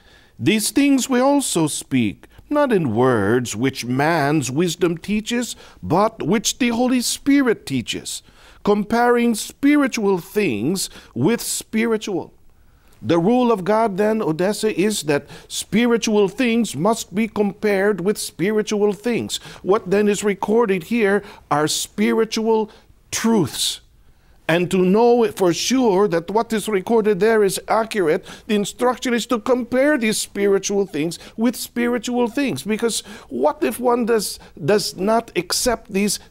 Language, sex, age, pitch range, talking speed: Filipino, male, 50-69, 170-230 Hz, 130 wpm